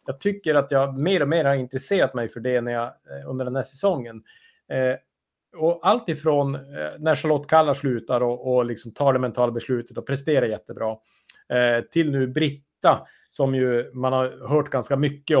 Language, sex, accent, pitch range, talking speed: Swedish, male, Norwegian, 125-155 Hz, 185 wpm